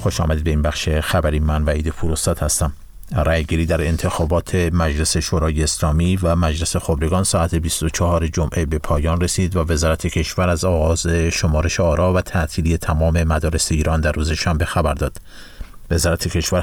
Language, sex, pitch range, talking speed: Persian, male, 85-95 Hz, 160 wpm